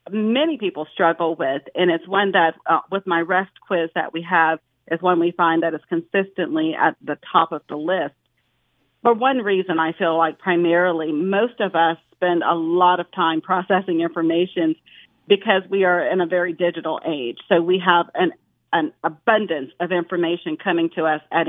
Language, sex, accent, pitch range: English, female, American, 165-210 Hz